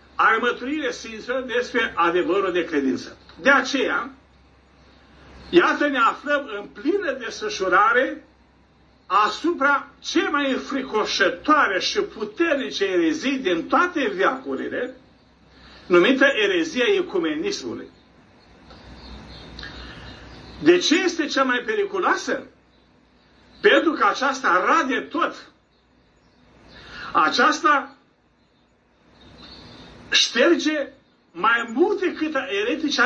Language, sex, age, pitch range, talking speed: Romanian, male, 50-69, 250-345 Hz, 80 wpm